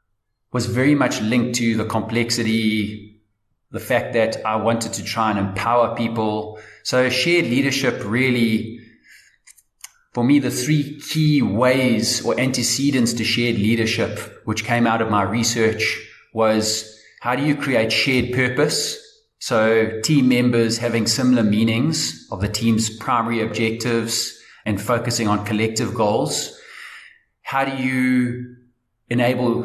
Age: 30-49